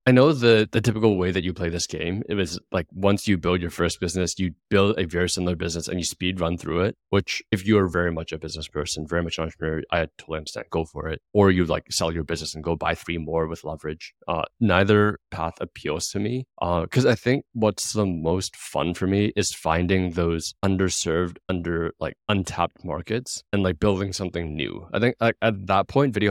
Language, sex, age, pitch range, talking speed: English, male, 20-39, 85-100 Hz, 230 wpm